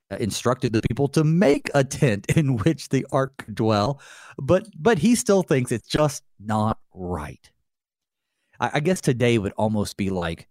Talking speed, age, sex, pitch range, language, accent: 165 wpm, 40-59, male, 100-135 Hz, English, American